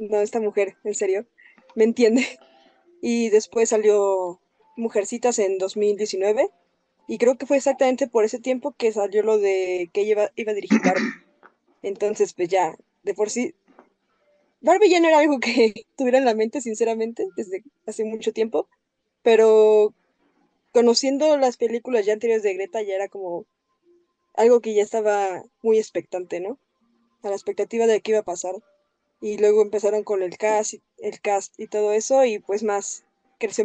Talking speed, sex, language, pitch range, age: 165 wpm, female, Spanish, 205-260 Hz, 20-39